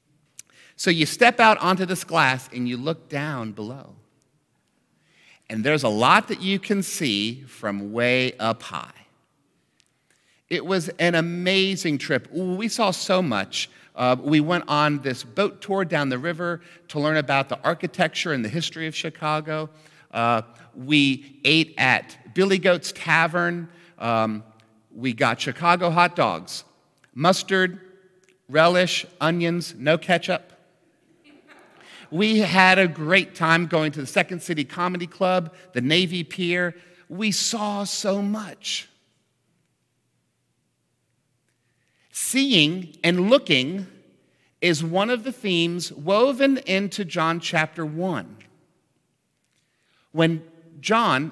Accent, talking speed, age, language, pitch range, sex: American, 125 wpm, 50-69, English, 150-190 Hz, male